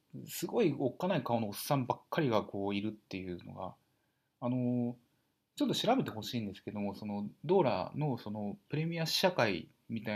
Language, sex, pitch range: Japanese, male, 100-155 Hz